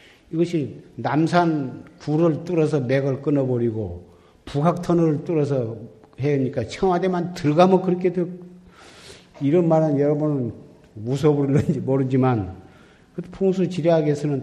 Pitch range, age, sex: 120-150 Hz, 50-69, male